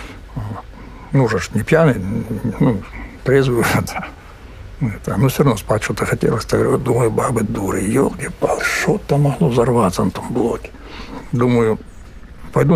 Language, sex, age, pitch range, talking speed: Ukrainian, male, 60-79, 85-135 Hz, 135 wpm